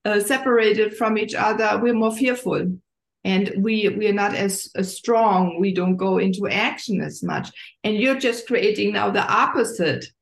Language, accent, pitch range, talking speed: English, German, 190-235 Hz, 175 wpm